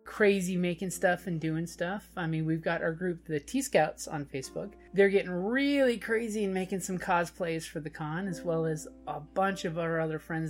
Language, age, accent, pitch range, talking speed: English, 30-49, American, 165-225 Hz, 210 wpm